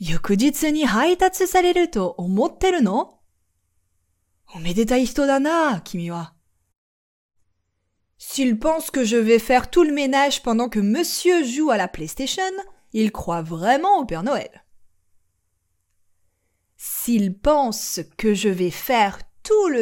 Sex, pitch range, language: female, 170-265 Hz, Japanese